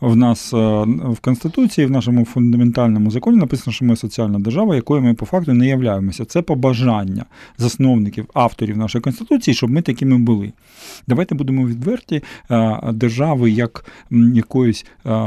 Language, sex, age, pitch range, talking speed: Ukrainian, male, 40-59, 115-140 Hz, 140 wpm